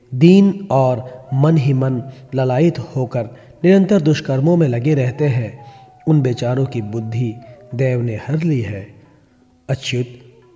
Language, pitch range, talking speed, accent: Hindi, 125-160 Hz, 130 wpm, native